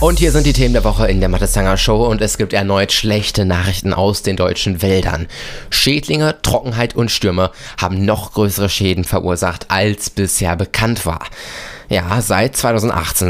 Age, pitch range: 20-39, 90-105 Hz